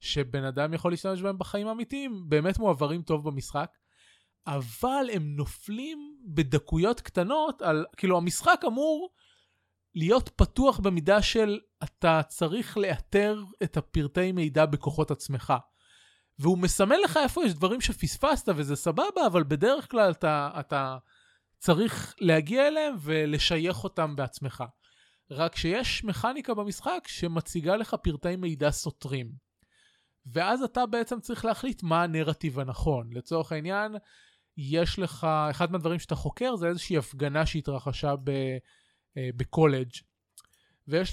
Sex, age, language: male, 20-39, Hebrew